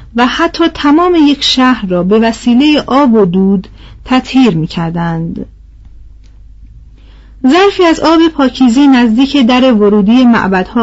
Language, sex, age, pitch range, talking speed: Persian, female, 40-59, 205-275 Hz, 120 wpm